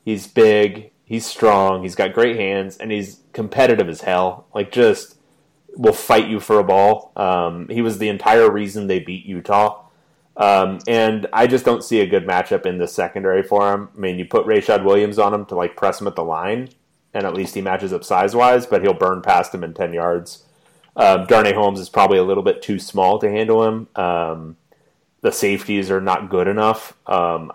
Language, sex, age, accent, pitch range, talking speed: English, male, 30-49, American, 90-115 Hz, 205 wpm